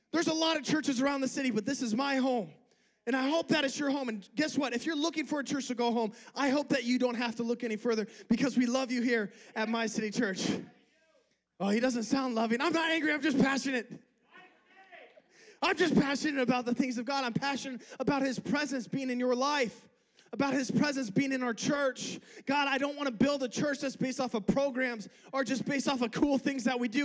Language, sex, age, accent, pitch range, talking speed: English, male, 20-39, American, 245-310 Hz, 240 wpm